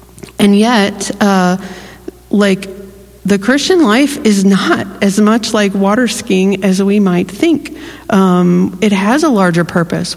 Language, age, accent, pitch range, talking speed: English, 40-59, American, 190-220 Hz, 140 wpm